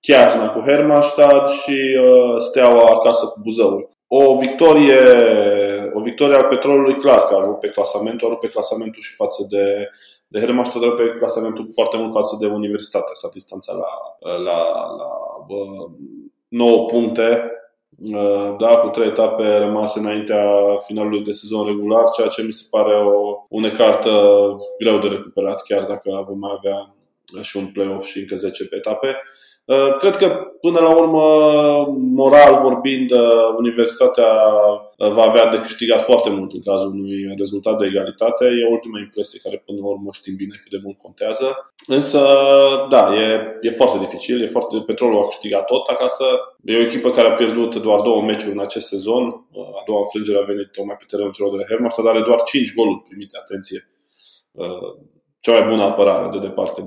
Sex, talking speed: male, 165 wpm